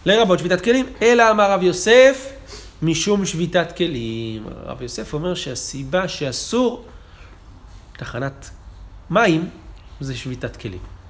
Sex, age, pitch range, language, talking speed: male, 30-49, 120-190 Hz, Hebrew, 110 wpm